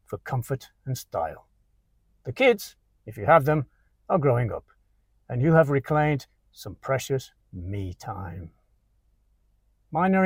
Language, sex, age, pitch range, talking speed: English, male, 60-79, 100-155 Hz, 130 wpm